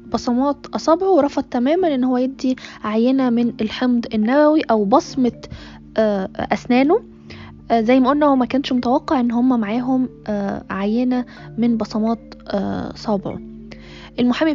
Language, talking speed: Arabic, 115 wpm